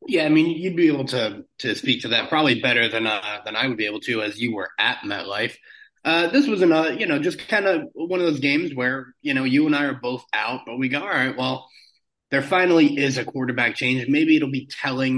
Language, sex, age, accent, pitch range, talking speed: English, male, 30-49, American, 125-175 Hz, 255 wpm